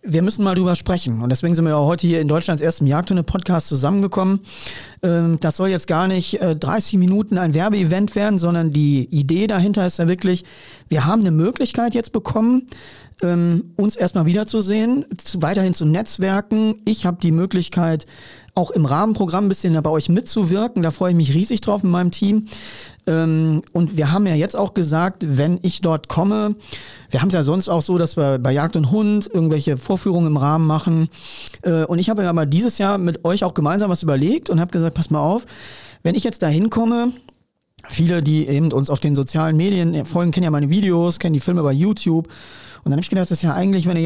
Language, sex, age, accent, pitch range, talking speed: German, male, 40-59, German, 155-195 Hz, 205 wpm